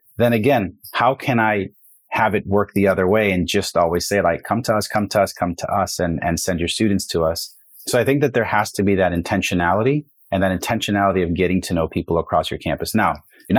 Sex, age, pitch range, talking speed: male, 30-49, 90-115 Hz, 245 wpm